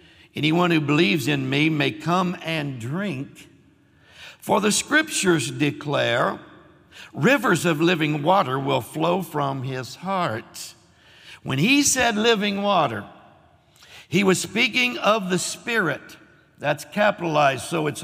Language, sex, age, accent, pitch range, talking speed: English, male, 60-79, American, 155-200 Hz, 125 wpm